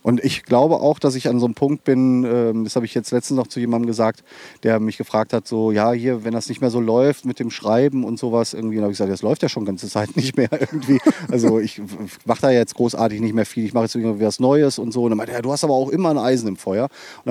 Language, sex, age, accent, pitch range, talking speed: German, male, 30-49, German, 110-130 Hz, 295 wpm